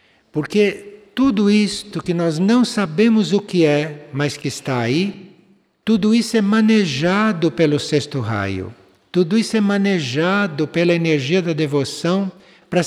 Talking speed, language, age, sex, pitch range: 140 wpm, Portuguese, 60-79, male, 130-195 Hz